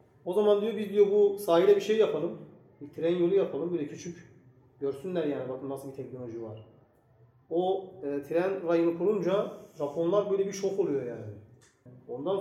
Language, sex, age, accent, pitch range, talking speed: Turkish, male, 40-59, native, 135-190 Hz, 170 wpm